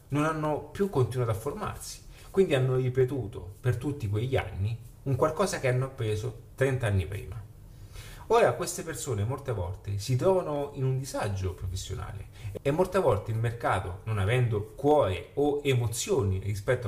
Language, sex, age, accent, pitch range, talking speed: Italian, male, 30-49, native, 105-135 Hz, 155 wpm